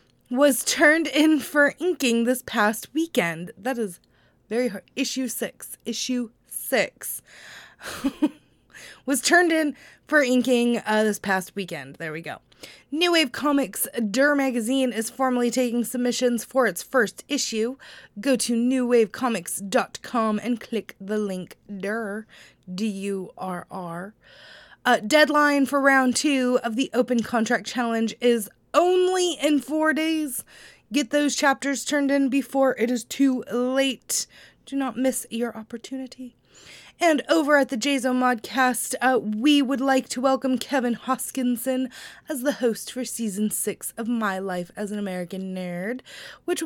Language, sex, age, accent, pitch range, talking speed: English, female, 20-39, American, 220-265 Hz, 140 wpm